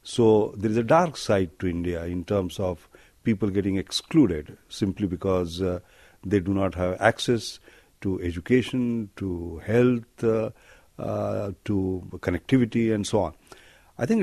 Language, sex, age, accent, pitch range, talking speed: English, male, 50-69, Indian, 90-110 Hz, 150 wpm